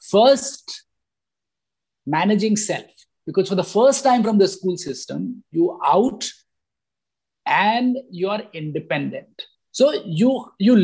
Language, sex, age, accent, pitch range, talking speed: English, male, 50-69, Indian, 195-255 Hz, 110 wpm